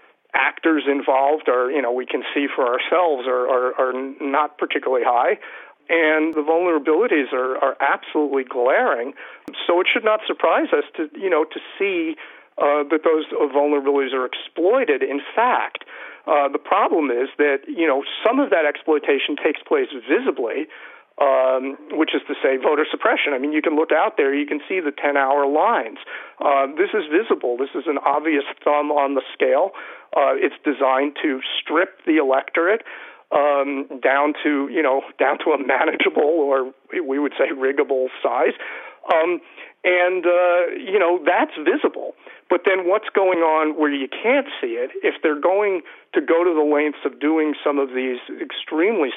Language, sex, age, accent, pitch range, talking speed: English, male, 40-59, American, 140-205 Hz, 170 wpm